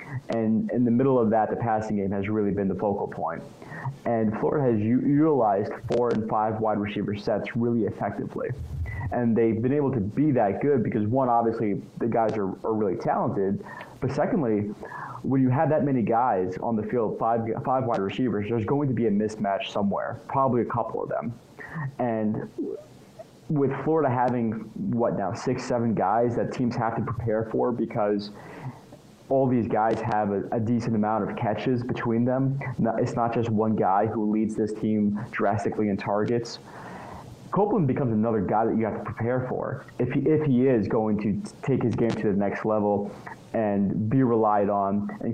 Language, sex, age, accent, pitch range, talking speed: English, male, 30-49, American, 105-125 Hz, 185 wpm